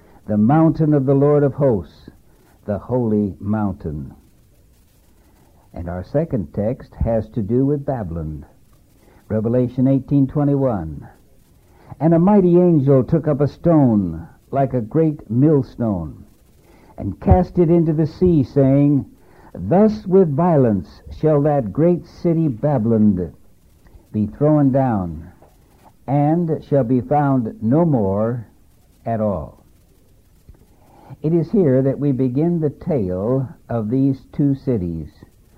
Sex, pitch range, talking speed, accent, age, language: male, 105-150 Hz, 125 wpm, American, 60-79, English